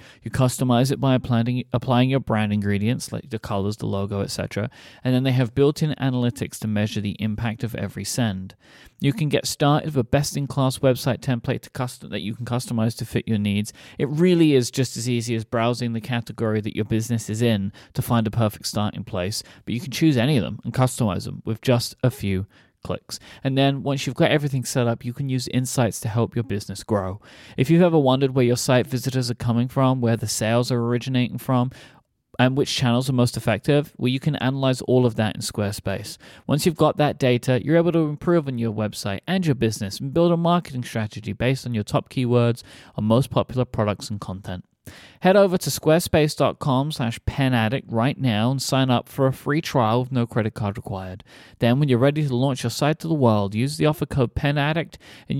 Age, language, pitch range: 30-49, English, 110-135 Hz